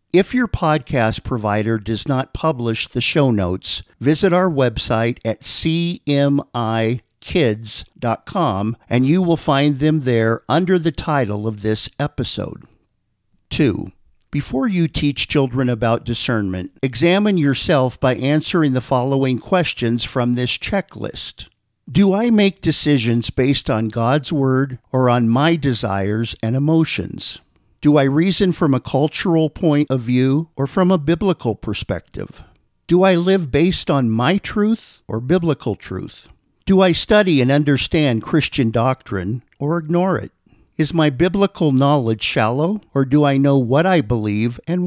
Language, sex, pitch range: English, male, 115-160 Hz